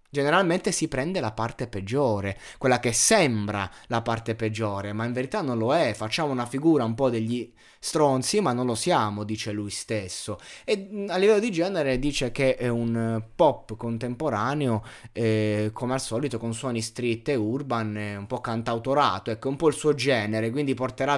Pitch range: 110-140 Hz